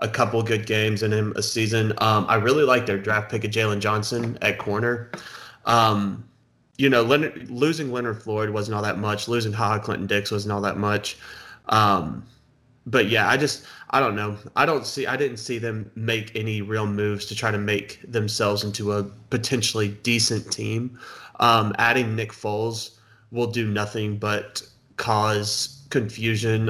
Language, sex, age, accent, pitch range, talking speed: English, male, 20-39, American, 105-115 Hz, 175 wpm